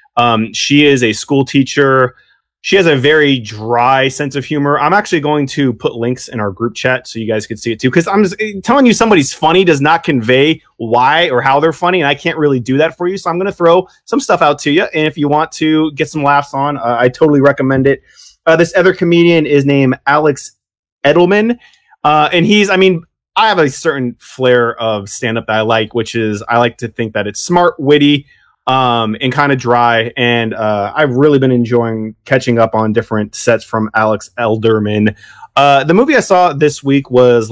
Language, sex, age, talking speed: English, male, 30-49, 220 wpm